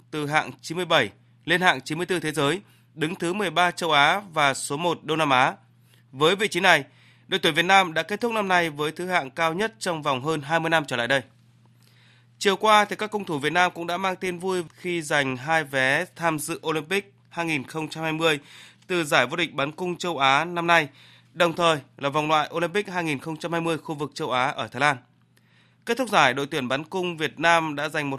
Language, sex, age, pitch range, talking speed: Vietnamese, male, 20-39, 140-175 Hz, 215 wpm